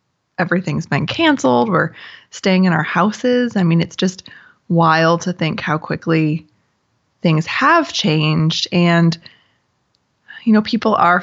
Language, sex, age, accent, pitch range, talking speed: English, female, 20-39, American, 165-190 Hz, 135 wpm